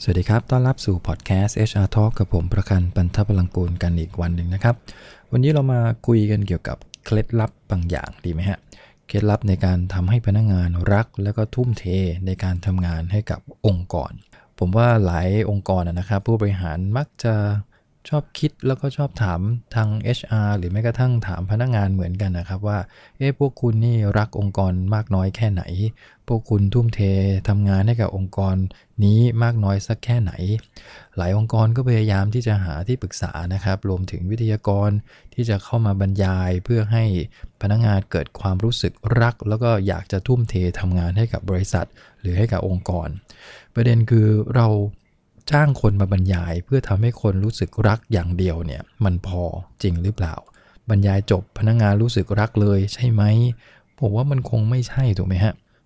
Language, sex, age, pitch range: English, male, 20-39, 95-115 Hz